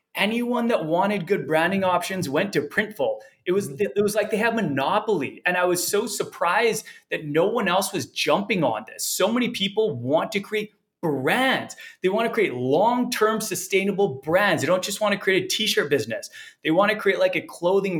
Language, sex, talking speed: English, male, 195 wpm